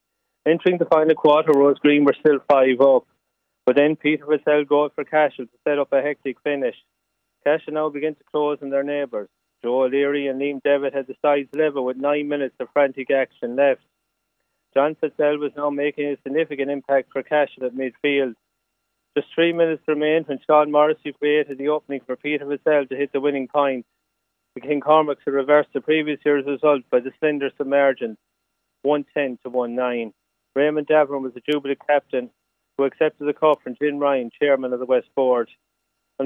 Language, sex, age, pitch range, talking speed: English, male, 30-49, 135-150 Hz, 185 wpm